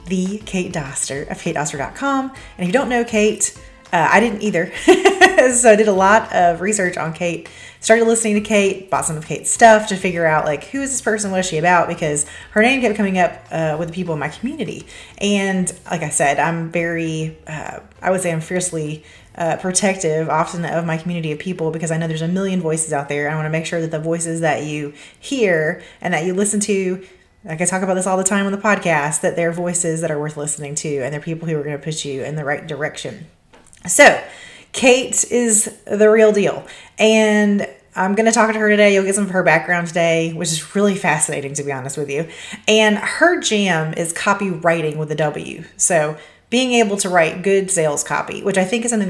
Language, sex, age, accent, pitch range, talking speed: English, female, 30-49, American, 160-210 Hz, 230 wpm